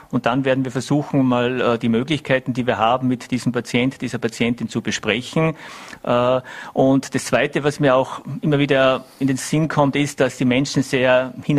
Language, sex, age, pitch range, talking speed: German, male, 50-69, 120-140 Hz, 185 wpm